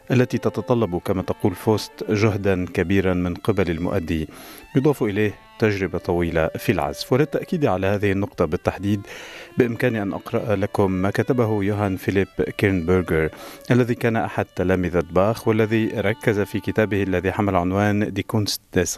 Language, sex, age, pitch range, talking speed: Arabic, male, 50-69, 90-110 Hz, 140 wpm